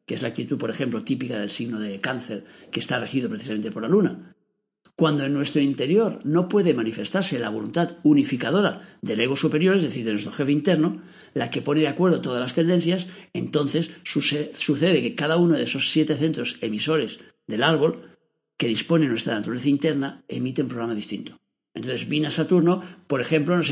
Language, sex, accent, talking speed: Spanish, male, Spanish, 185 wpm